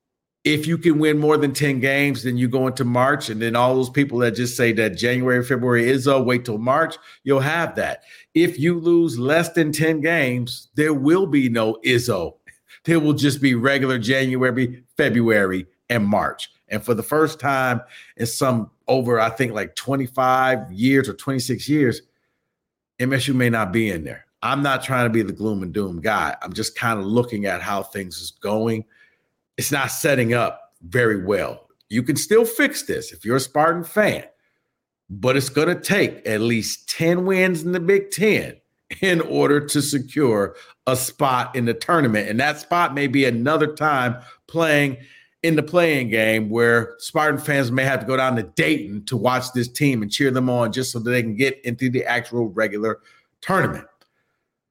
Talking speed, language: 190 wpm, English